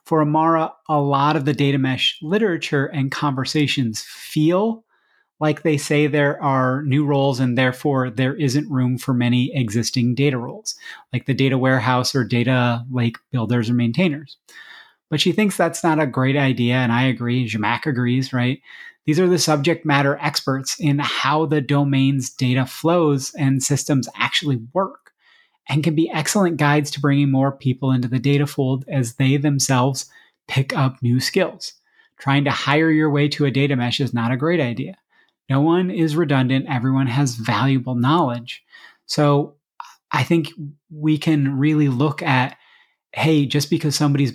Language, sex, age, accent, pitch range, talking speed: English, male, 30-49, American, 130-155 Hz, 165 wpm